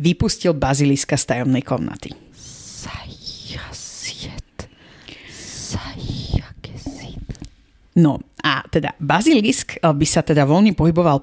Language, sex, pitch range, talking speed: Slovak, female, 145-175 Hz, 75 wpm